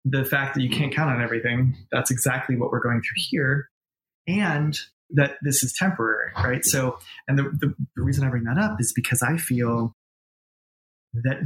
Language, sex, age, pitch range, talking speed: English, male, 20-39, 120-140 Hz, 185 wpm